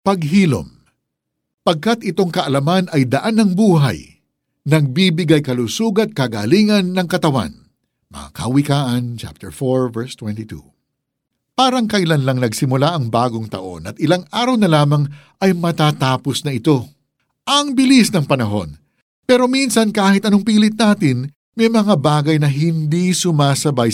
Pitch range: 125-180 Hz